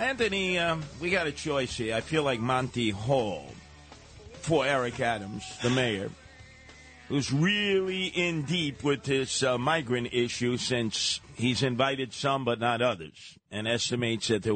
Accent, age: American, 50-69